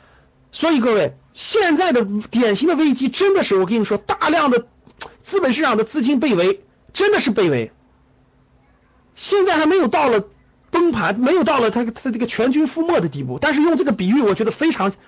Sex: male